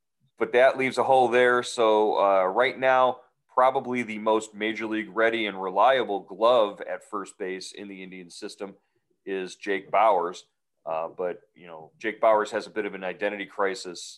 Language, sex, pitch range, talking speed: English, male, 90-105 Hz, 180 wpm